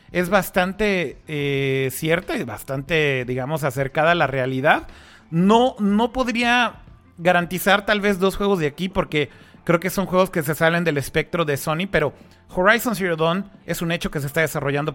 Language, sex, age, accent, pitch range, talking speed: Spanish, male, 30-49, Mexican, 150-185 Hz, 175 wpm